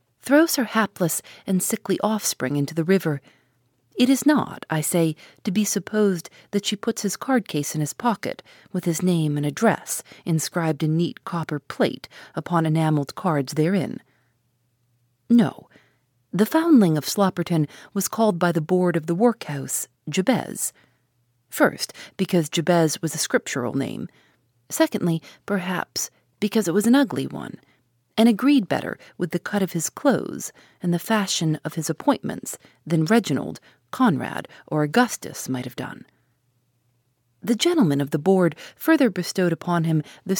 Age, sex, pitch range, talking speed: 40-59, female, 145-210 Hz, 150 wpm